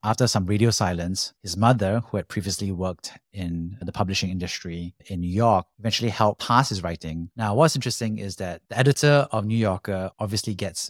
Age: 30-49